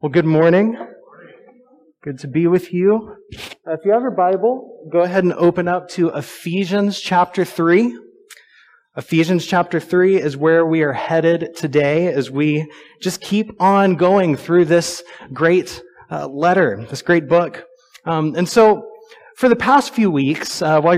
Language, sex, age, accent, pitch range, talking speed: English, male, 30-49, American, 165-220 Hz, 160 wpm